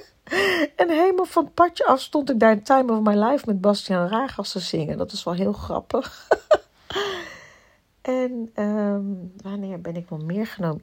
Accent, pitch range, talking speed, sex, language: Dutch, 160-225 Hz, 175 wpm, female, Dutch